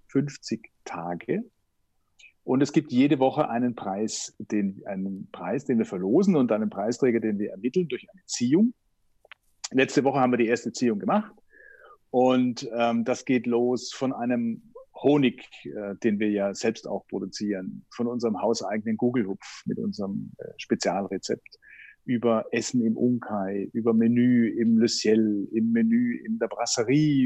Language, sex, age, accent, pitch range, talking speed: German, male, 50-69, German, 110-160 Hz, 150 wpm